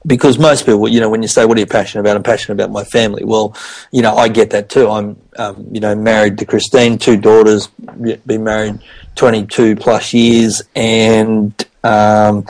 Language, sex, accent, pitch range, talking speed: English, male, Australian, 110-130 Hz, 195 wpm